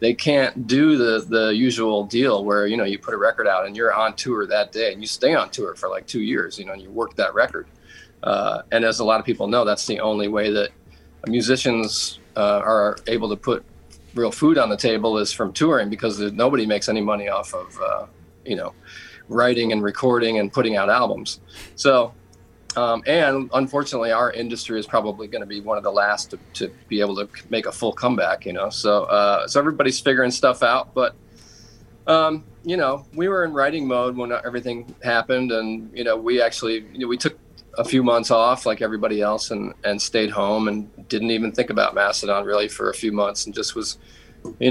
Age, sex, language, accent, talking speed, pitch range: 40-59, male, English, American, 215 wpm, 105-125 Hz